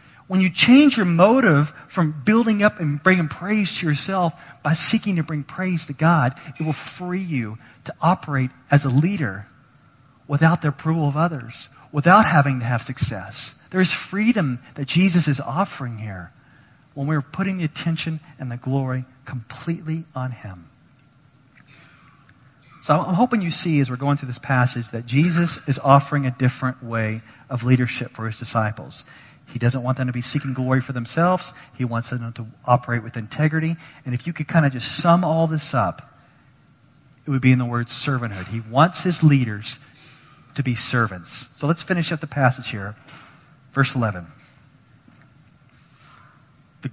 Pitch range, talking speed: 125-155 Hz, 170 wpm